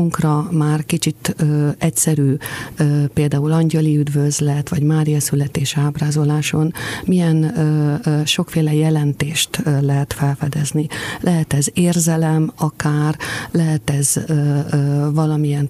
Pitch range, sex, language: 145-160 Hz, female, Hungarian